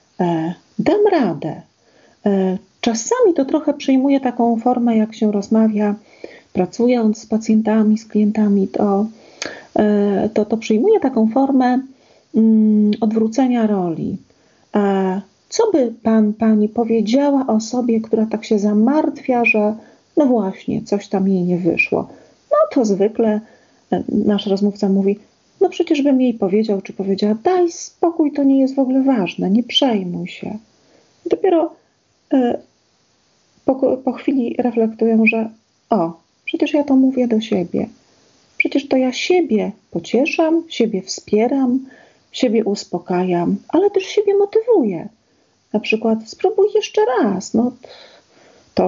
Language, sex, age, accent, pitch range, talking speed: Polish, female, 40-59, native, 210-275 Hz, 125 wpm